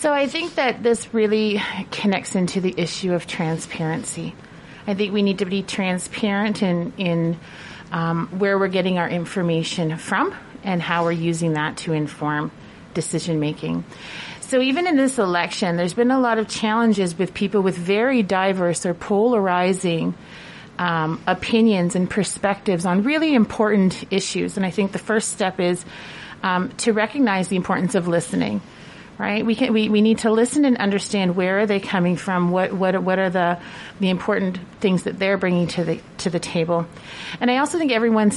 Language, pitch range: English, 175-215 Hz